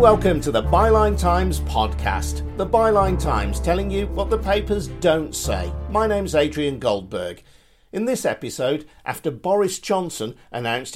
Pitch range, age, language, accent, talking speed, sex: 105-165 Hz, 50-69, English, British, 150 wpm, male